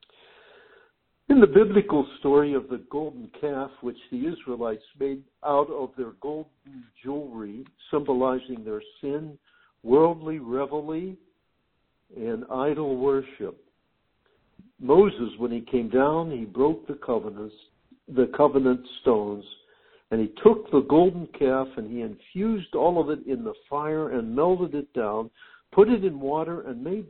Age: 60-79